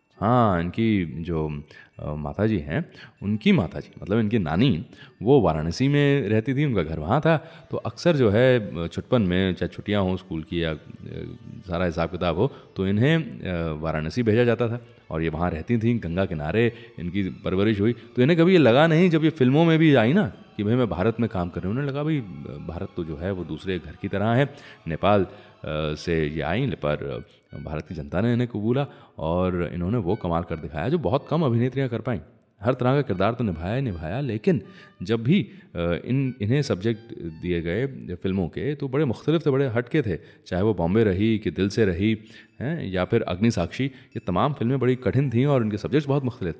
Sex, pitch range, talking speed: male, 90-125 Hz, 160 wpm